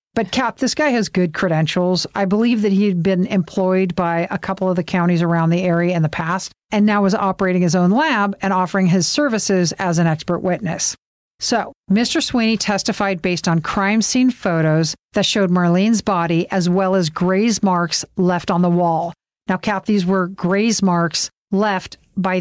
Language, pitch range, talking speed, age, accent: English, 180-210 Hz, 190 wpm, 50-69, American